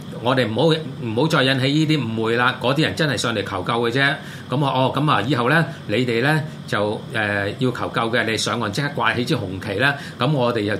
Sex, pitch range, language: male, 110-155 Hz, Chinese